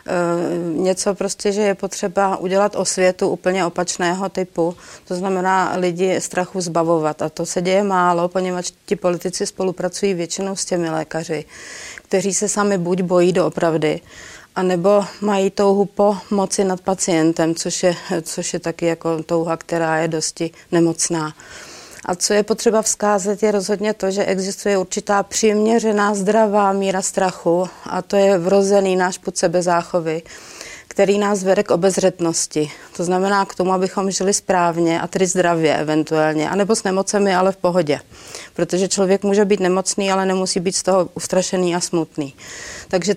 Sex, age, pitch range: female, 40-59, 175-200 Hz